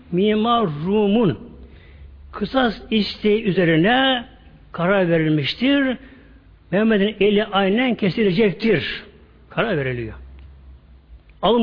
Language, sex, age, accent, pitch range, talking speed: Turkish, male, 60-79, native, 145-220 Hz, 70 wpm